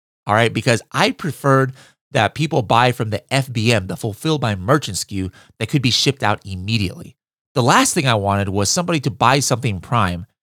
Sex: male